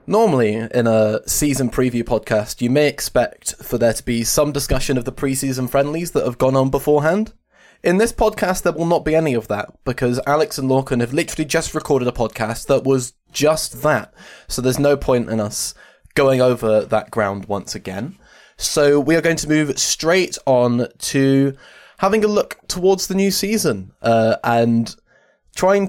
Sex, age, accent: male, 20-39, British